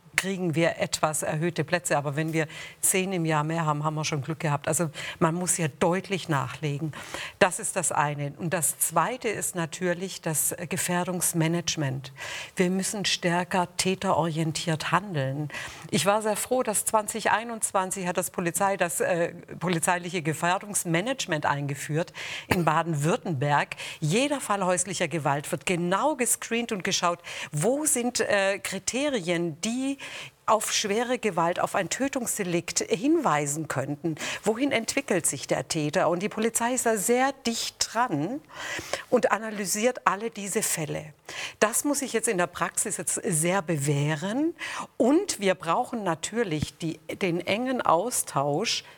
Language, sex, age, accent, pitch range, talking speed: German, female, 50-69, German, 160-215 Hz, 140 wpm